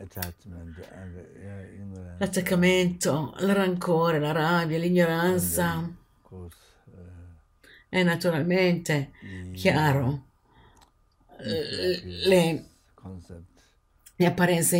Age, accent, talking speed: 60-79, native, 45 wpm